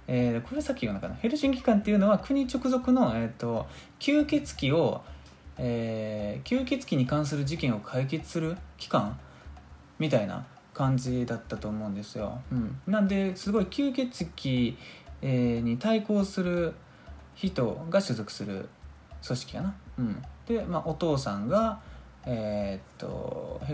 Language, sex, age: Japanese, male, 20-39